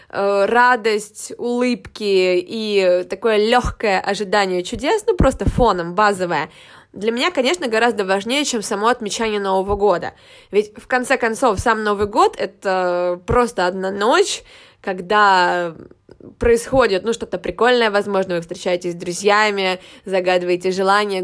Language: Russian